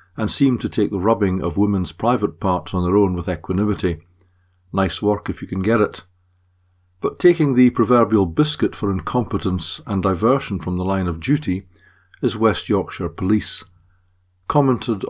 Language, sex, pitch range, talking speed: English, male, 90-105 Hz, 165 wpm